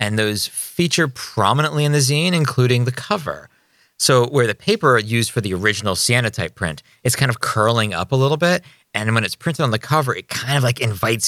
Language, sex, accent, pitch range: English, male, American, 90-125 Hz